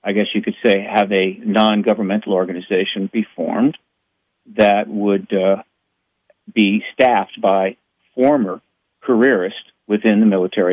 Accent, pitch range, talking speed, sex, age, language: American, 100-120 Hz, 125 wpm, male, 50-69, English